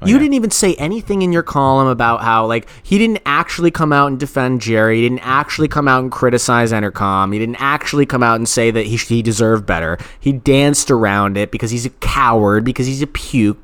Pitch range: 120-165 Hz